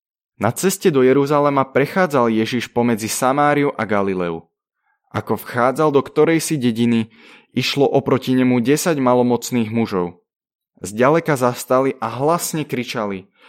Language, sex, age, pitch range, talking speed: Slovak, male, 20-39, 105-130 Hz, 115 wpm